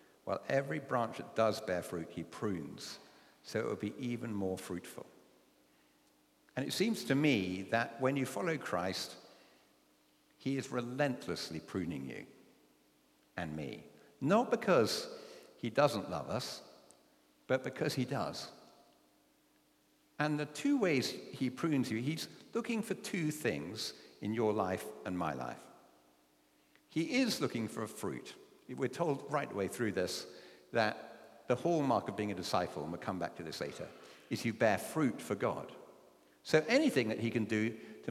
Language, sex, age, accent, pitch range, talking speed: English, male, 50-69, British, 100-150 Hz, 160 wpm